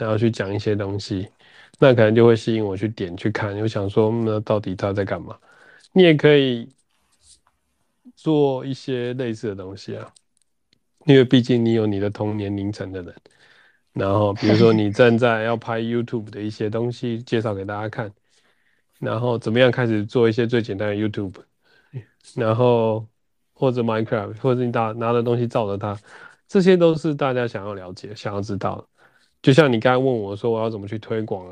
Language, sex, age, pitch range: Chinese, male, 20-39, 105-120 Hz